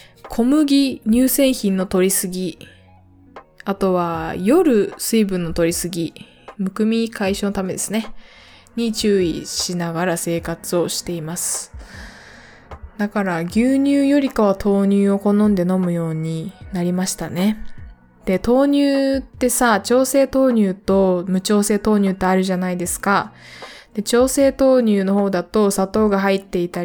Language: Japanese